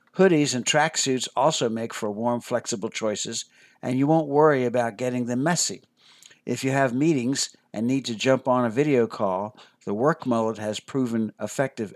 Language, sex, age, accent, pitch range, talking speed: English, male, 60-79, American, 115-145 Hz, 175 wpm